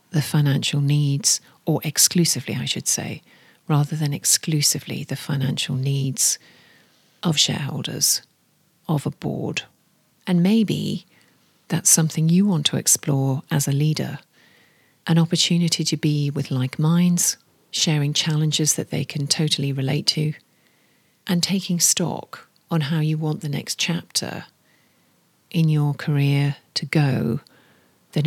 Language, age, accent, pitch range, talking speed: English, 40-59, British, 145-185 Hz, 125 wpm